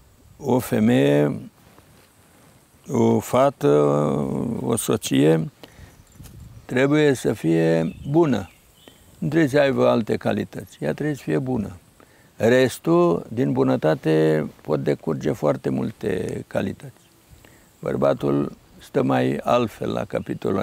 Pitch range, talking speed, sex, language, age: 105-140 Hz, 100 wpm, male, Romanian, 60-79